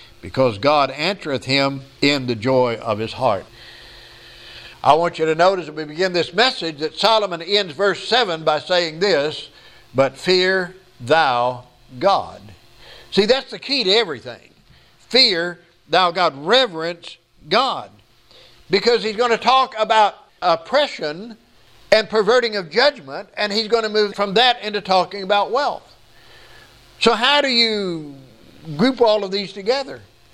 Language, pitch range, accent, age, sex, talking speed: English, 150-220 Hz, American, 60-79, male, 145 wpm